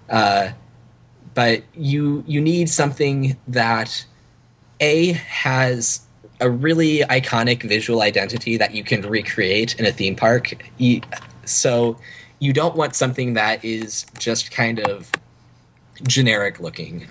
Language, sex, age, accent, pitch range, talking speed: English, male, 20-39, American, 110-130 Hz, 120 wpm